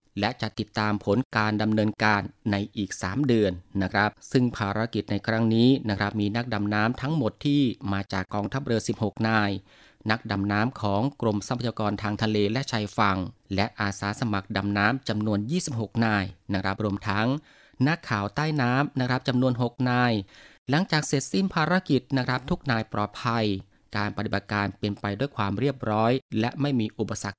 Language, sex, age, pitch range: Thai, male, 20-39, 105-135 Hz